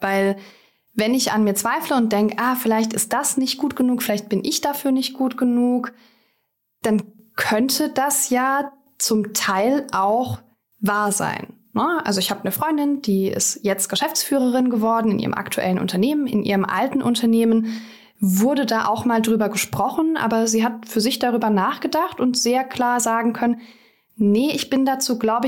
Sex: female